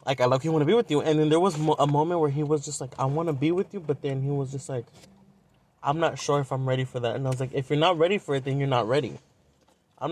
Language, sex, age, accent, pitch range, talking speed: English, male, 20-39, American, 135-170 Hz, 330 wpm